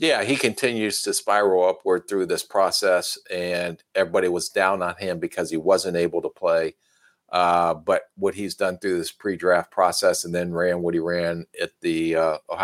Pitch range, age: 85-100 Hz, 50-69